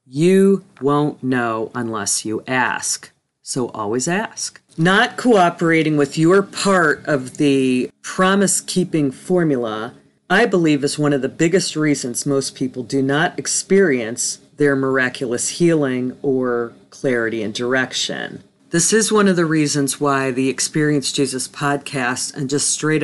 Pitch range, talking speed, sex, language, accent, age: 130-165 Hz, 135 wpm, female, English, American, 40-59